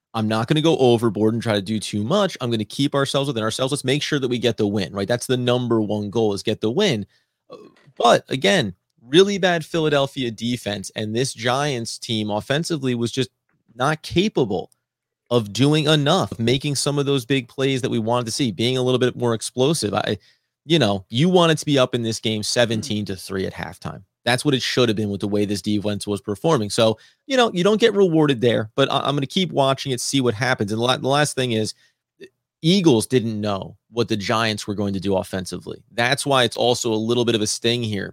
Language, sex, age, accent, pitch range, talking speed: English, male, 30-49, American, 110-140 Hz, 230 wpm